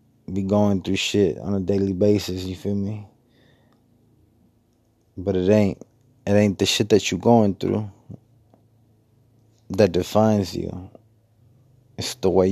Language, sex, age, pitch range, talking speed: English, male, 20-39, 95-130 Hz, 135 wpm